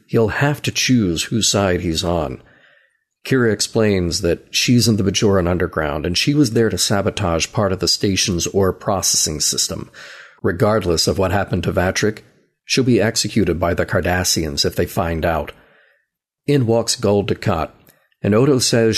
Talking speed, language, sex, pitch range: 165 wpm, English, male, 95-125 Hz